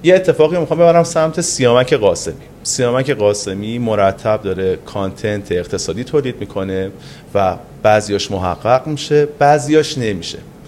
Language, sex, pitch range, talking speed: Persian, male, 105-145 Hz, 120 wpm